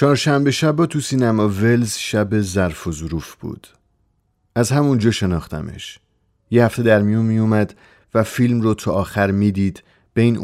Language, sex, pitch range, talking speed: Persian, male, 95-120 Hz, 150 wpm